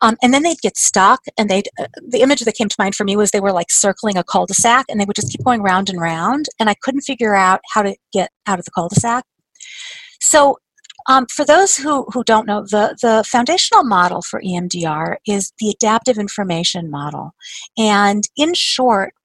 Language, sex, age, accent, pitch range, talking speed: English, female, 50-69, American, 190-265 Hz, 210 wpm